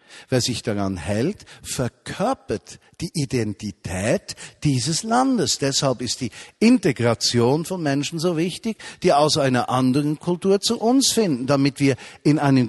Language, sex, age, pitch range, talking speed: German, male, 50-69, 120-165 Hz, 135 wpm